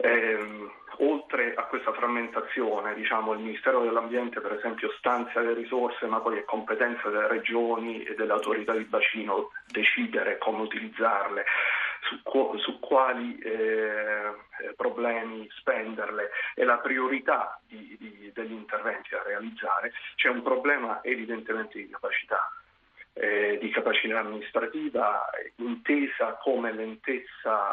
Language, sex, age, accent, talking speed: Italian, male, 40-59, native, 120 wpm